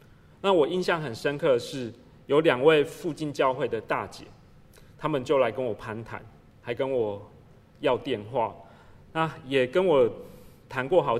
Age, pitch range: 30-49, 120-155 Hz